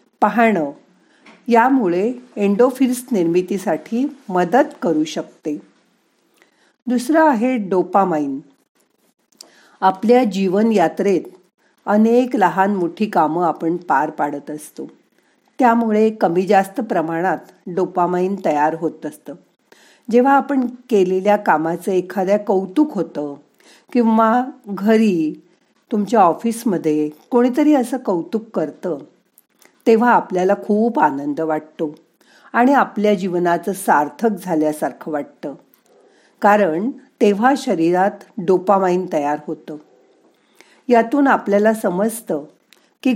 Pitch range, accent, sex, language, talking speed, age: 175-235 Hz, native, female, Marathi, 90 wpm, 50-69